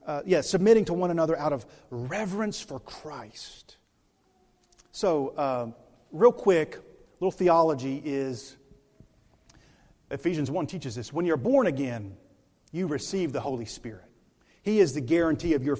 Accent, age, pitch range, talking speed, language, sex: American, 40-59, 125-175 Hz, 150 wpm, English, male